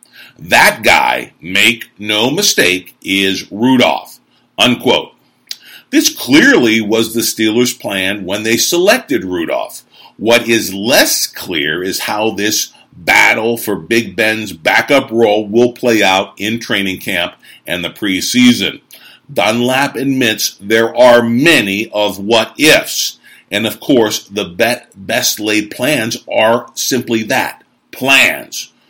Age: 50-69